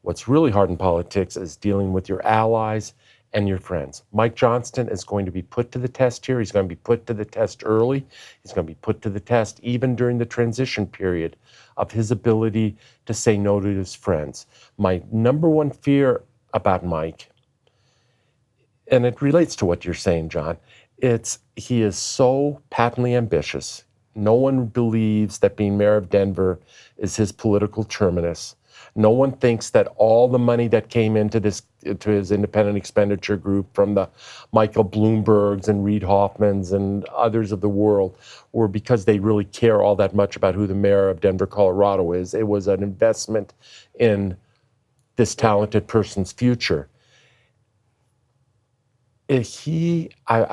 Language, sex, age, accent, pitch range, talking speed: English, male, 50-69, American, 100-120 Hz, 170 wpm